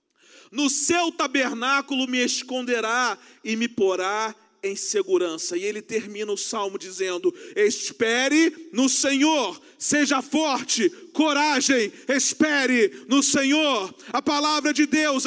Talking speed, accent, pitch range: 115 wpm, Brazilian, 270-335 Hz